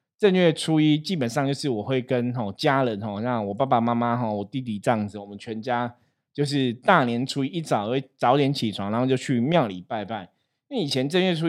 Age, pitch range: 20-39, 115-145 Hz